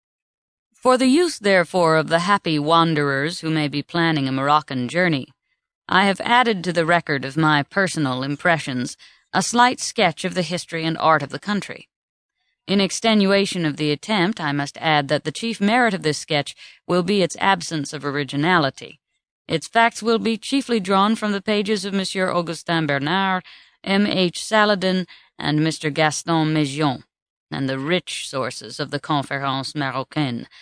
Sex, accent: female, American